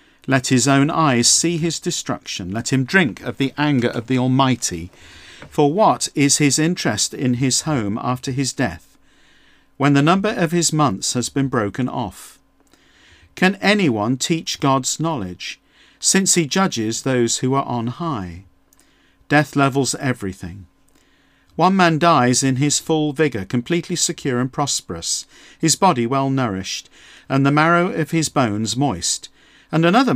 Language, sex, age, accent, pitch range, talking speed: English, male, 50-69, British, 120-155 Hz, 155 wpm